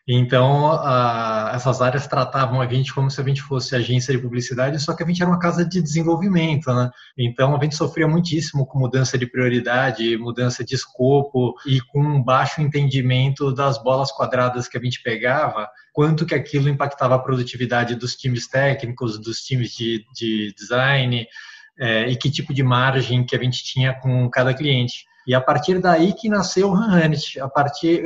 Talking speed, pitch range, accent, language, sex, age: 180 wpm, 125-150 Hz, Brazilian, Portuguese, male, 20-39